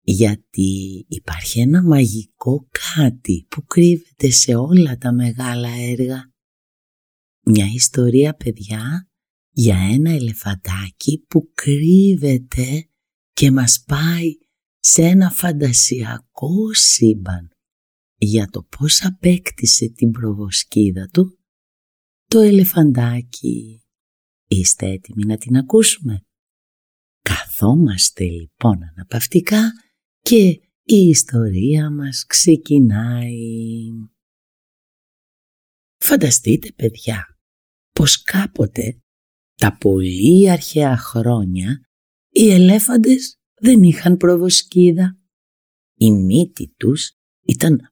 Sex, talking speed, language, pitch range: female, 85 wpm, Greek, 110-170 Hz